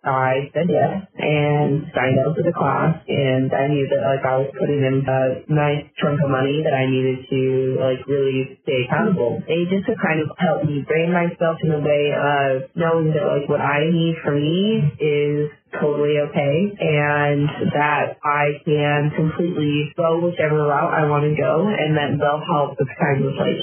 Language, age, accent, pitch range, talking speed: English, 20-39, American, 140-160 Hz, 195 wpm